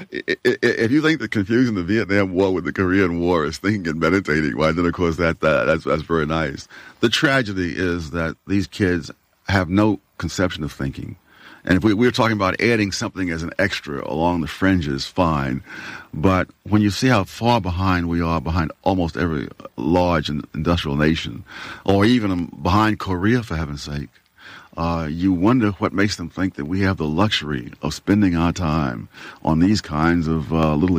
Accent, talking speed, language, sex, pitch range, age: American, 190 wpm, English, male, 80-105 Hz, 50-69